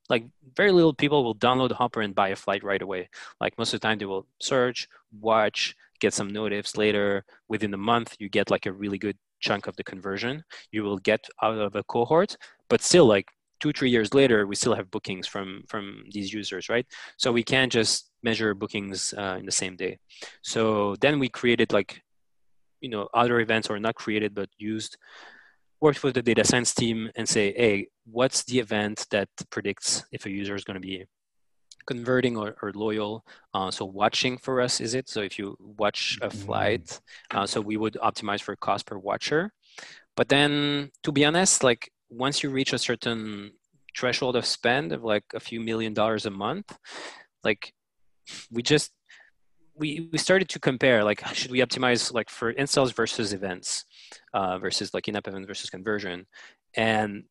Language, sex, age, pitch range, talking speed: English, male, 20-39, 105-125 Hz, 190 wpm